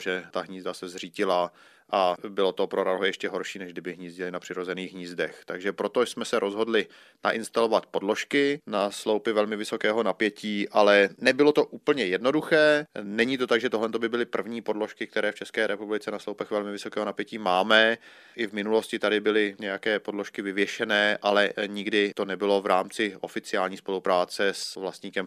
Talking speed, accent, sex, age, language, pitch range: 170 wpm, native, male, 30-49, Czech, 95-110 Hz